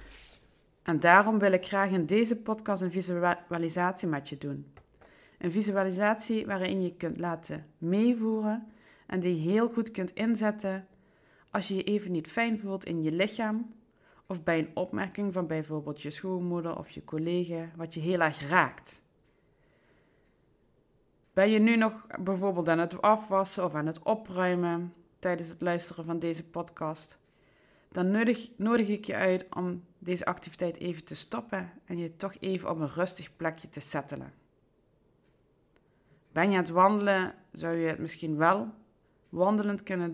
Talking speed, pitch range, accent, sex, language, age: 155 wpm, 165-195 Hz, Dutch, female, Dutch, 20-39